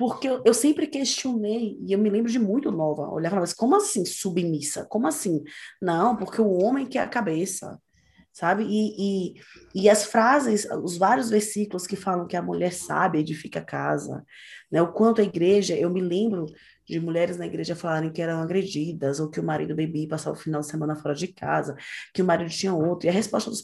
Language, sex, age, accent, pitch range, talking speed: Portuguese, female, 20-39, Brazilian, 165-210 Hz, 210 wpm